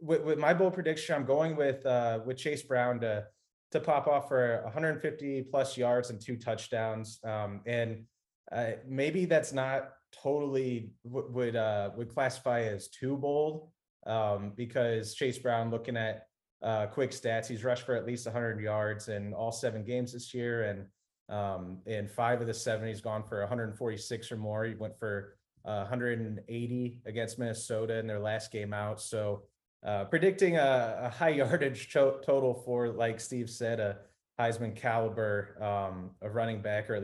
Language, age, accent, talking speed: English, 20-39, American, 170 wpm